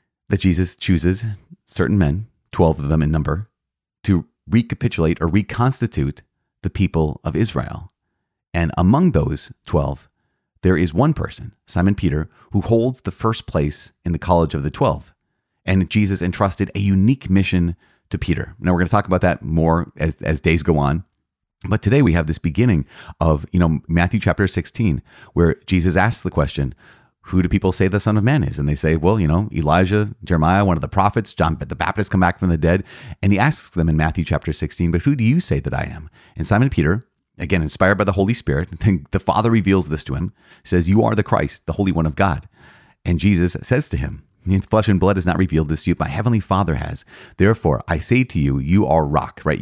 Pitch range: 80-105 Hz